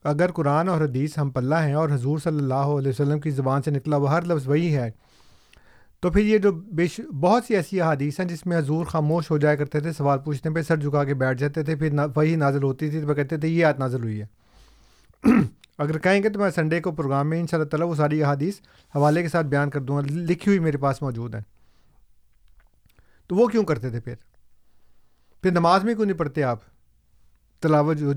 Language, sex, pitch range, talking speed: Urdu, male, 135-170 Hz, 225 wpm